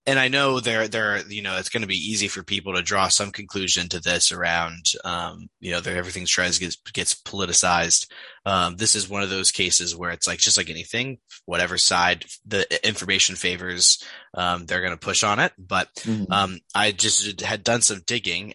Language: English